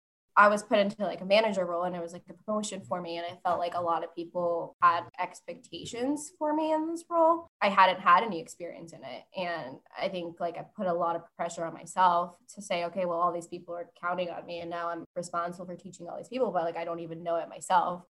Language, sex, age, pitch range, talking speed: English, female, 10-29, 170-205 Hz, 260 wpm